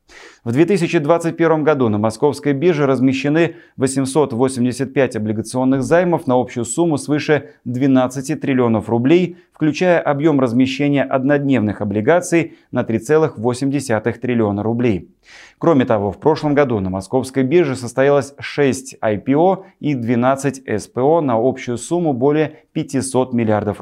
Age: 30-49